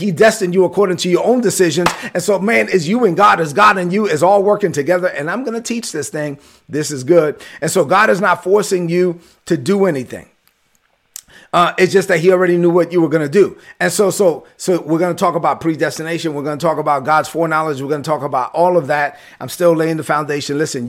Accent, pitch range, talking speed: American, 145-180 Hz, 235 wpm